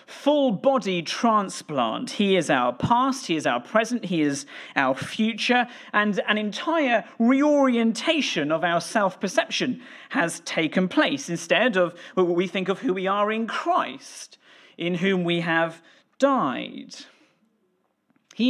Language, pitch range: English, 175-250 Hz